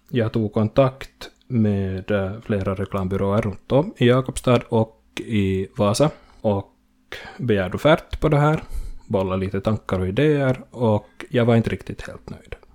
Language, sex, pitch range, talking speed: Swedish, male, 100-115 Hz, 145 wpm